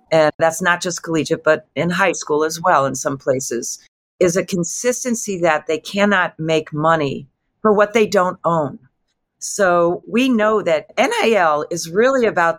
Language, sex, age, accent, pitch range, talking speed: English, female, 40-59, American, 155-205 Hz, 165 wpm